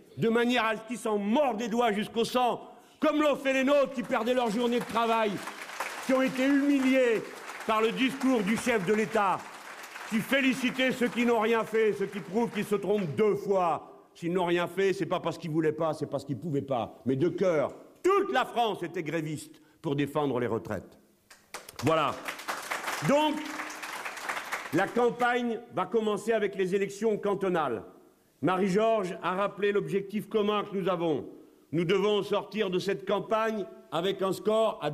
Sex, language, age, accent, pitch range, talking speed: male, French, 50-69, French, 195-240 Hz, 180 wpm